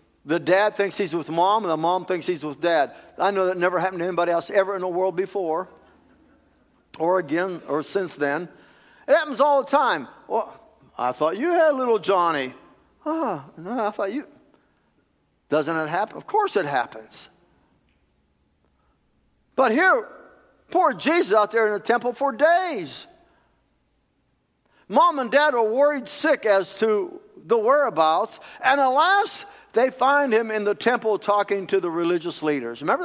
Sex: male